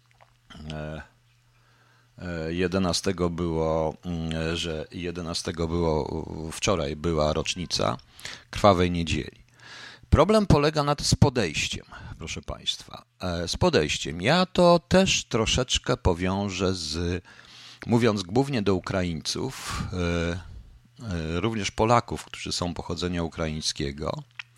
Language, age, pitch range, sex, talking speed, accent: Polish, 50-69, 85-120 Hz, male, 90 wpm, native